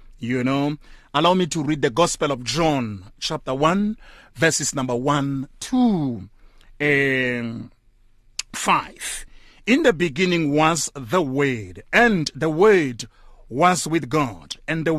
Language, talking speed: English, 130 wpm